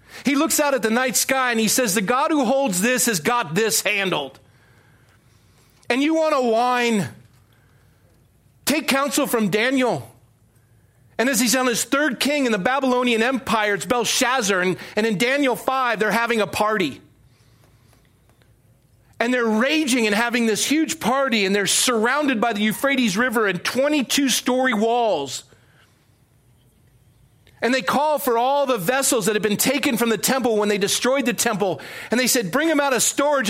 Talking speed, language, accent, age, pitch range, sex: 170 wpm, English, American, 40-59, 195-265 Hz, male